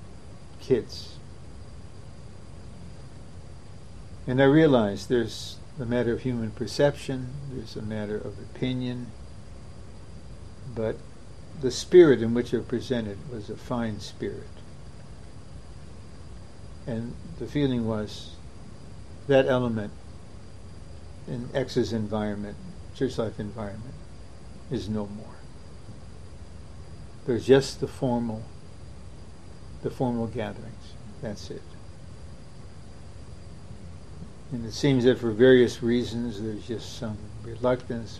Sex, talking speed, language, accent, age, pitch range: male, 95 wpm, English, American, 60-79, 95-120 Hz